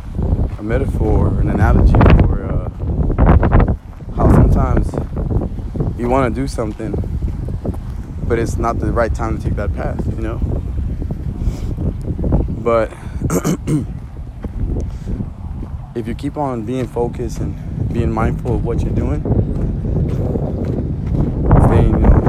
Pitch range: 90-115 Hz